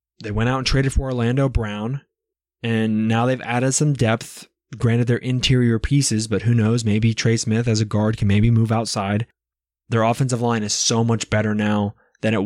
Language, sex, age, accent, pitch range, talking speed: English, male, 20-39, American, 105-120 Hz, 195 wpm